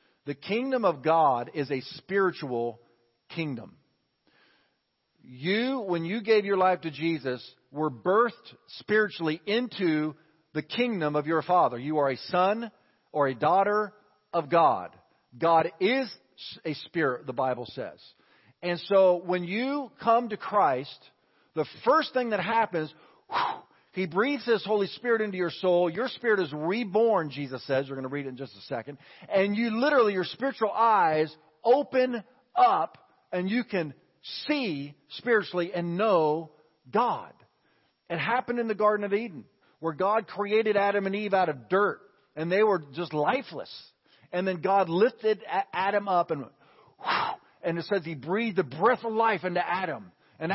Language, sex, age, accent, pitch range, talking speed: English, male, 50-69, American, 155-220 Hz, 160 wpm